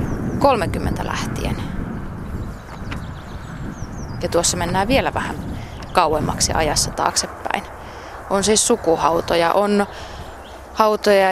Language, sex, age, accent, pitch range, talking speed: Finnish, female, 20-39, native, 170-205 Hz, 80 wpm